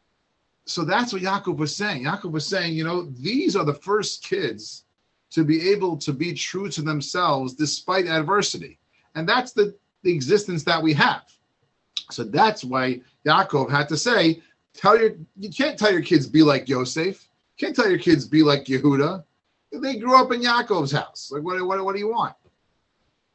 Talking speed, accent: 185 wpm, American